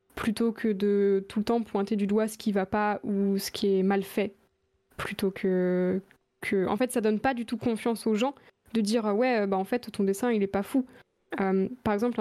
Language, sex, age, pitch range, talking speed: French, female, 20-39, 200-230 Hz, 250 wpm